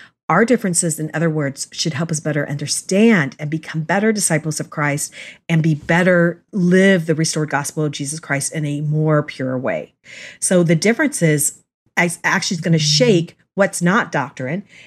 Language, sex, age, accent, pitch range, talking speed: English, female, 40-59, American, 150-175 Hz, 175 wpm